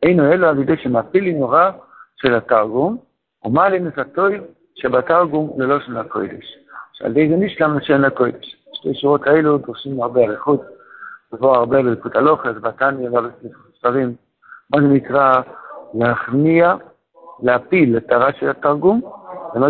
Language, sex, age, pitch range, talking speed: Hebrew, male, 60-79, 125-160 Hz, 140 wpm